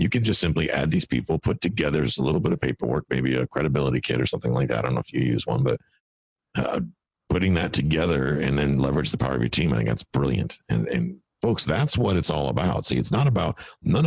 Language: English